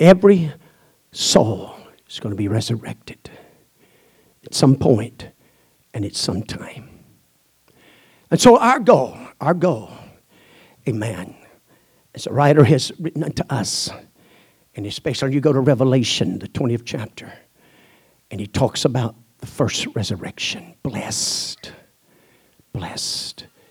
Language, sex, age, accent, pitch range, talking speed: English, male, 60-79, American, 115-155 Hz, 120 wpm